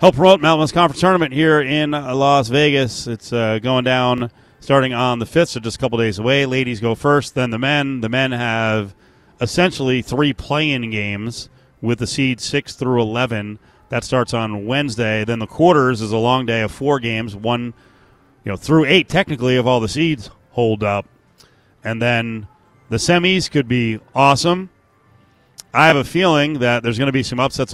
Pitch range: 115-140 Hz